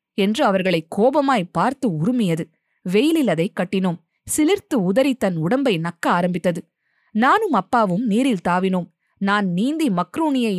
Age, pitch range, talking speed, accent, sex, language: 20-39, 170-235 Hz, 120 wpm, native, female, Tamil